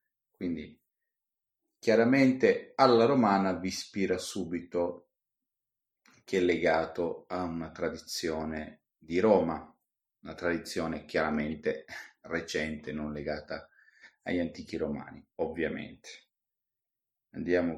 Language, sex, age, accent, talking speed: Italian, male, 40-59, native, 90 wpm